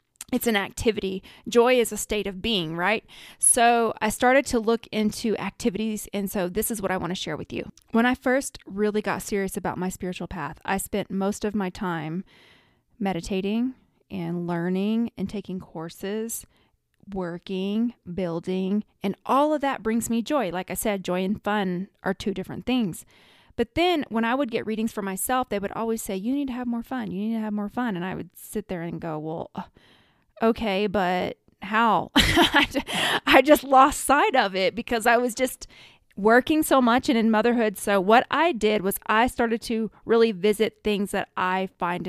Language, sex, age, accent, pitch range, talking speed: English, female, 20-39, American, 190-240 Hz, 195 wpm